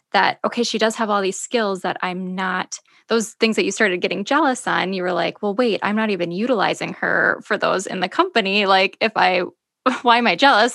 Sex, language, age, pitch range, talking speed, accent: female, English, 10-29, 195-235 Hz, 230 wpm, American